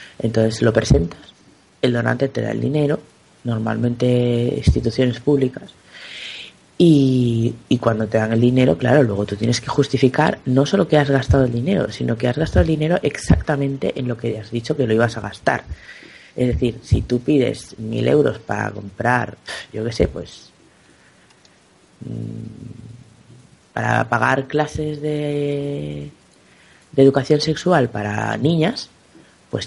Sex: female